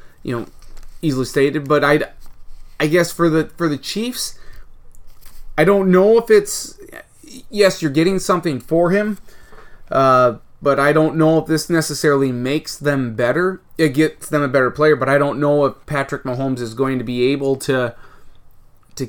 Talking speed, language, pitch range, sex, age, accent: 175 wpm, English, 130-165 Hz, male, 20-39, American